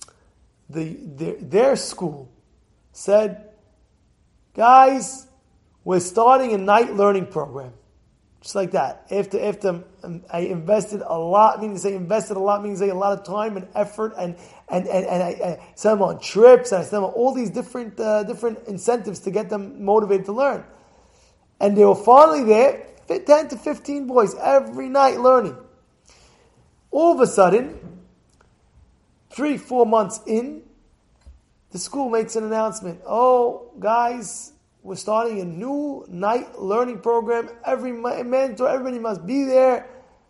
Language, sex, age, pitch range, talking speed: English, male, 20-39, 180-240 Hz, 155 wpm